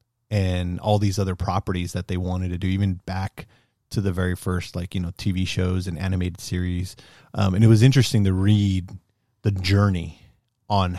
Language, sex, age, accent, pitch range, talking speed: English, male, 30-49, American, 95-120 Hz, 185 wpm